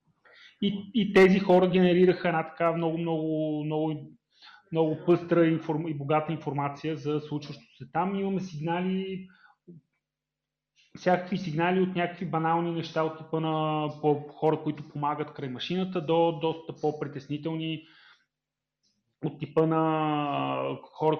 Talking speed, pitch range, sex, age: 115 wpm, 145-170 Hz, male, 30-49